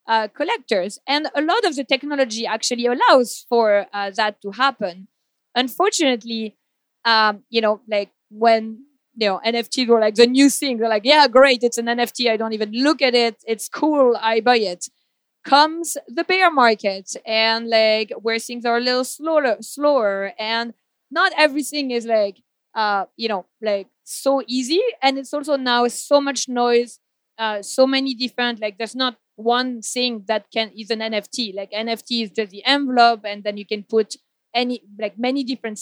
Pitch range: 220-270 Hz